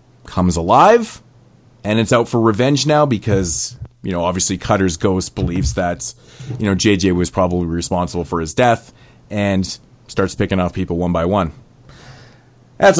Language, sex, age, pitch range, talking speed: English, male, 30-49, 95-125 Hz, 155 wpm